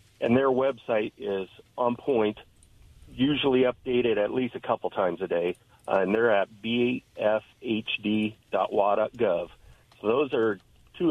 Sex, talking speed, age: male, 130 wpm, 40-59